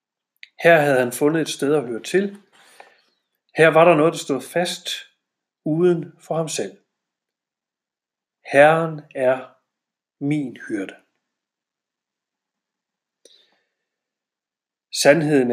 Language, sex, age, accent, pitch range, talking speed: Danish, male, 40-59, native, 135-175 Hz, 95 wpm